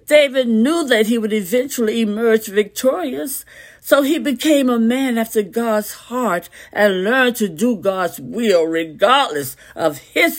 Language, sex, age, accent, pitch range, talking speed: English, female, 60-79, American, 200-275 Hz, 145 wpm